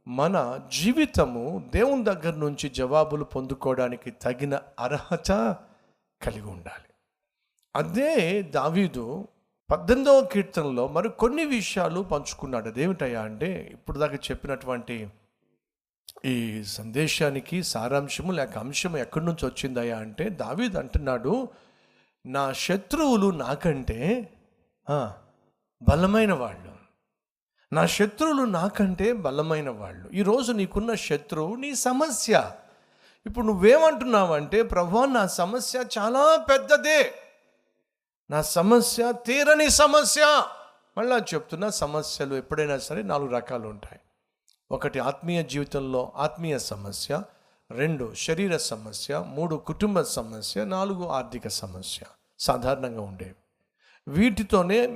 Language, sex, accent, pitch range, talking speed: Telugu, male, native, 130-215 Hz, 95 wpm